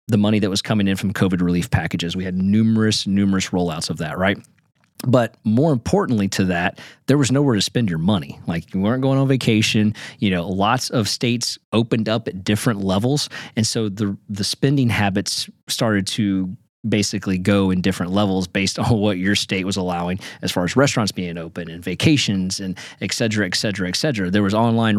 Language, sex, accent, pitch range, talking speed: English, male, American, 100-140 Hz, 200 wpm